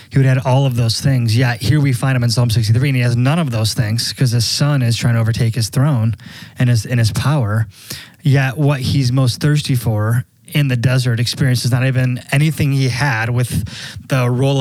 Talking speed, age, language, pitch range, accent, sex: 225 wpm, 20-39, English, 115-140 Hz, American, male